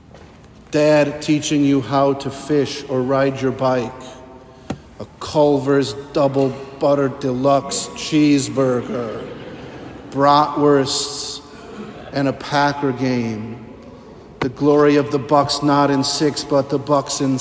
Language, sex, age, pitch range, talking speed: English, male, 50-69, 125-140 Hz, 115 wpm